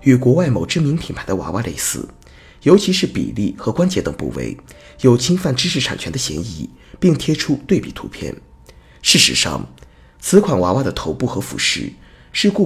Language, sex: Chinese, male